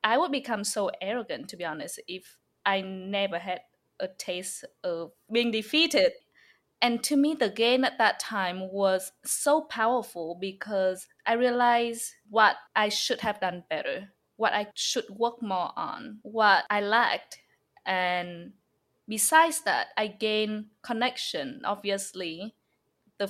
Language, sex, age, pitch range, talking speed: English, female, 20-39, 185-230 Hz, 140 wpm